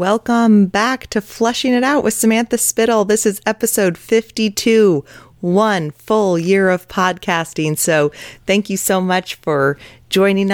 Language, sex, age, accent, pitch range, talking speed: English, female, 30-49, American, 145-190 Hz, 140 wpm